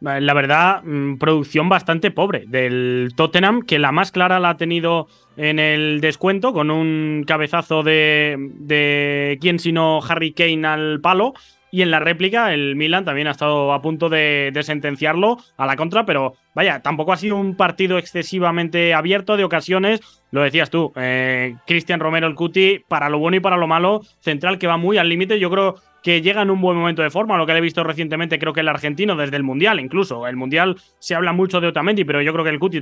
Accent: Spanish